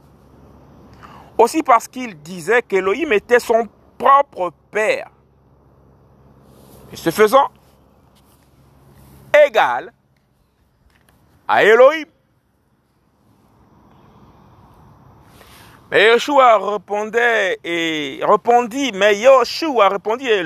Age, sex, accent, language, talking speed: 50-69, male, French, French, 60 wpm